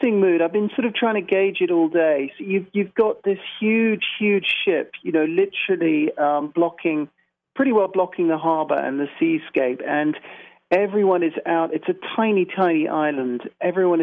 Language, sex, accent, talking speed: English, male, British, 180 wpm